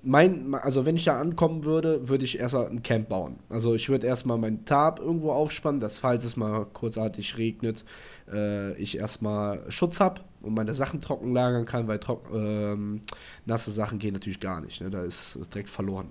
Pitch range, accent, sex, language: 105-125 Hz, German, male, German